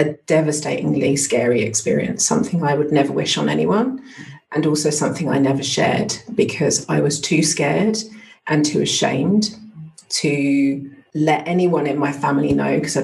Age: 40-59